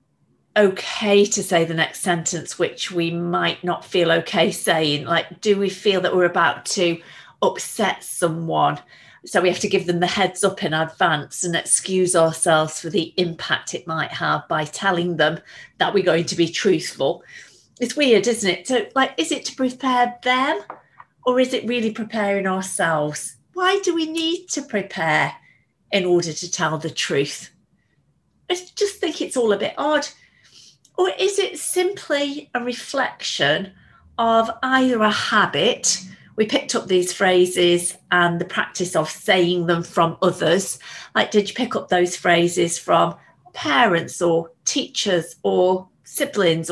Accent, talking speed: British, 160 wpm